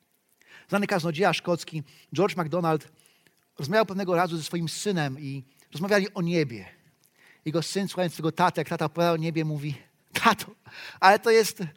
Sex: male